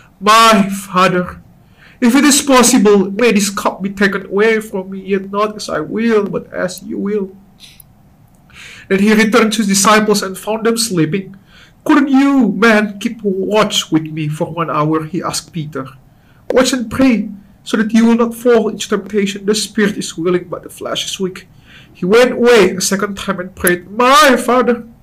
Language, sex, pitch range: English, male, 175-235 Hz